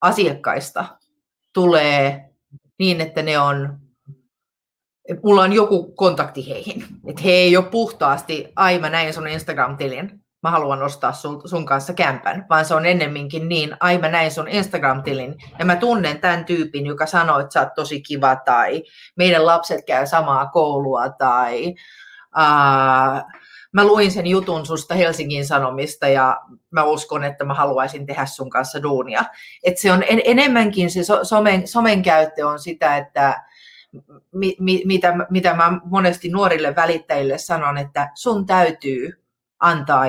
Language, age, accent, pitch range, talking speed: Finnish, 30-49, native, 140-180 Hz, 150 wpm